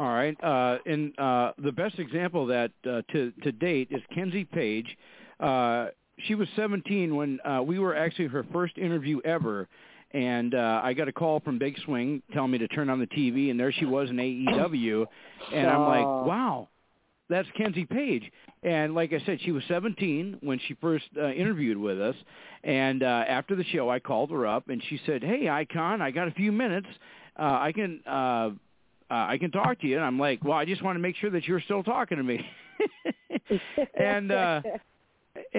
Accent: American